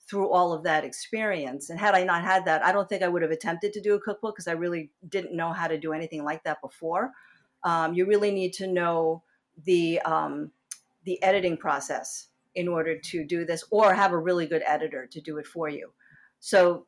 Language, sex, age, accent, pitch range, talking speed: English, female, 50-69, American, 165-205 Hz, 220 wpm